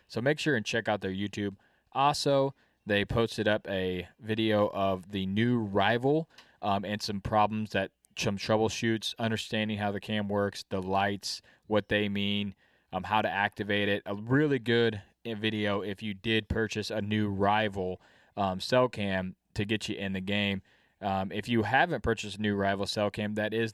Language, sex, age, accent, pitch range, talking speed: English, male, 20-39, American, 100-110 Hz, 180 wpm